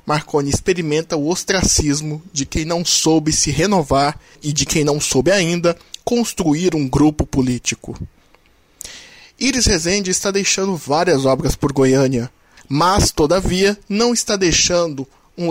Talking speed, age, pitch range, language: 130 wpm, 20-39, 135-175 Hz, Portuguese